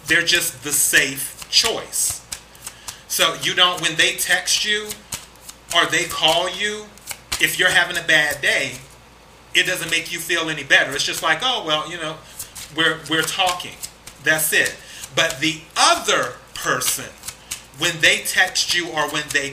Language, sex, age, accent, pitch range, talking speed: English, male, 30-49, American, 150-175 Hz, 160 wpm